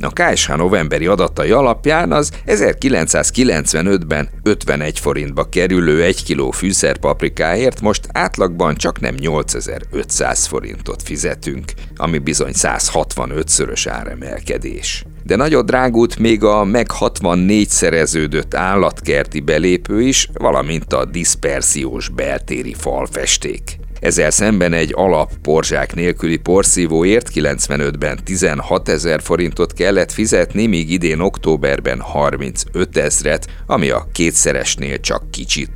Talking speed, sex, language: 105 wpm, male, Hungarian